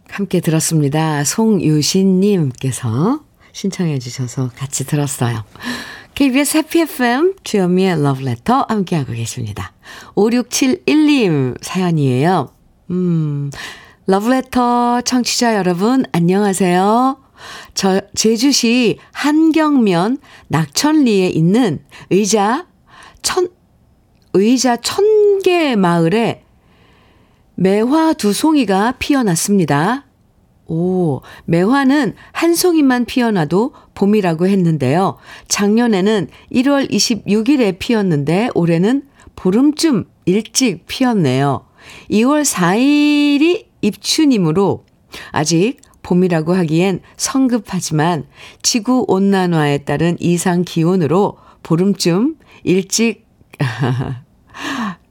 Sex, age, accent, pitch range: female, 50-69, native, 160-250 Hz